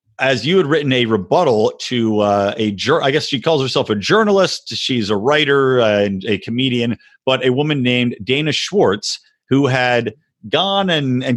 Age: 40-59